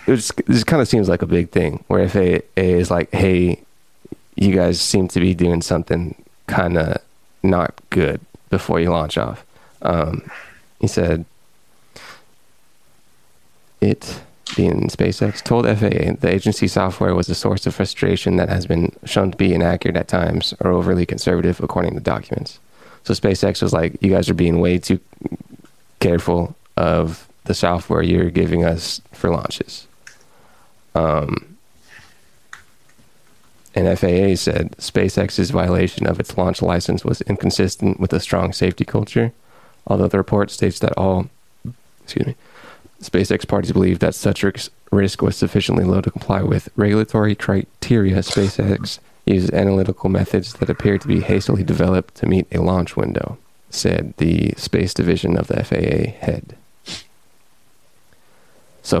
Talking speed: 145 wpm